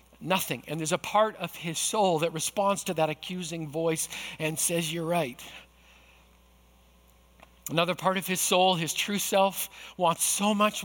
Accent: American